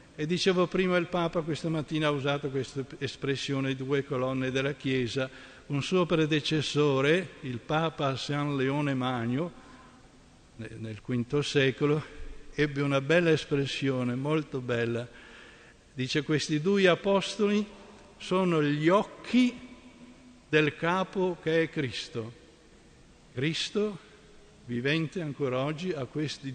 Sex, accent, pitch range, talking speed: male, native, 125-155 Hz, 115 wpm